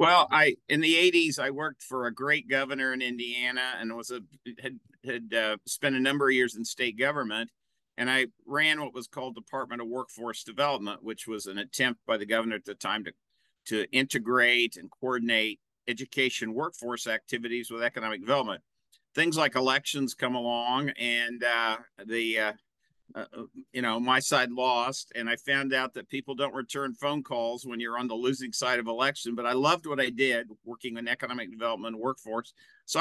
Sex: male